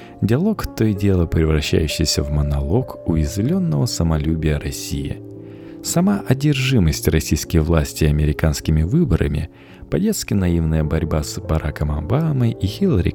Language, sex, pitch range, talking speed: Russian, male, 80-105 Hz, 110 wpm